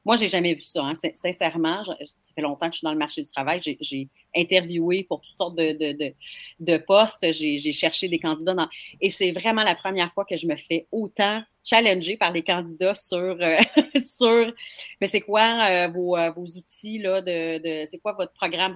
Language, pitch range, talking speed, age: French, 165-200 Hz, 220 wpm, 30-49